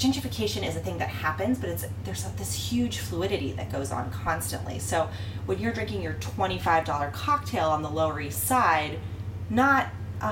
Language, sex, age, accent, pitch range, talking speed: English, female, 30-49, American, 95-105 Hz, 185 wpm